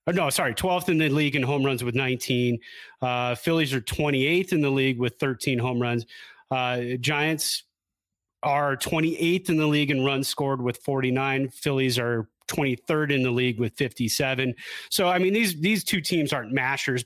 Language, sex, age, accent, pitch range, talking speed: English, male, 30-49, American, 130-155 Hz, 185 wpm